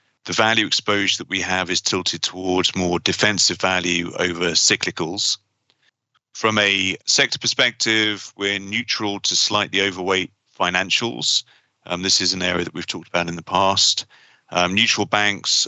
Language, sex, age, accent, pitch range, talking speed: English, male, 30-49, British, 90-105 Hz, 150 wpm